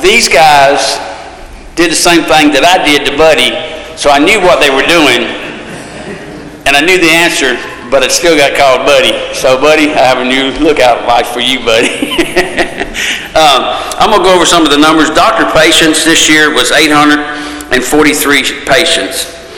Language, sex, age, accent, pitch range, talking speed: English, male, 50-69, American, 130-160 Hz, 175 wpm